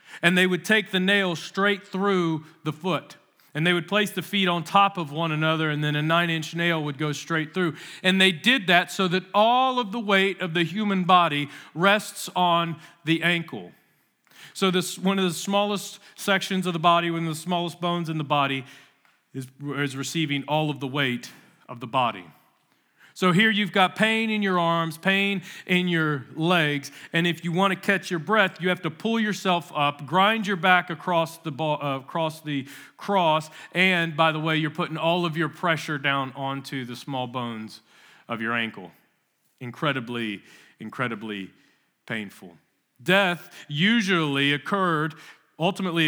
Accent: American